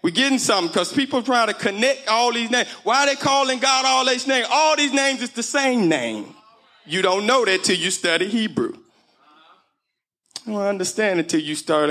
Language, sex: English, male